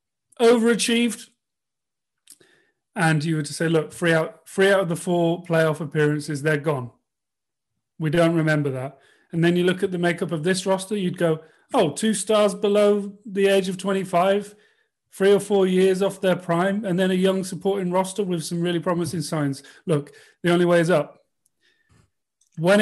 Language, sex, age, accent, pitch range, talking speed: English, male, 40-59, British, 150-195 Hz, 175 wpm